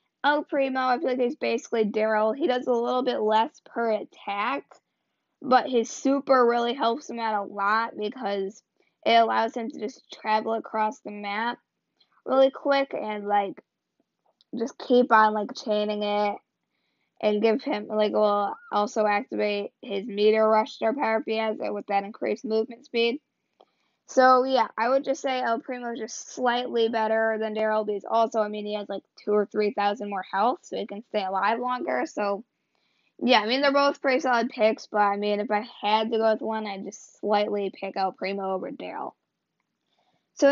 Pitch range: 210-250 Hz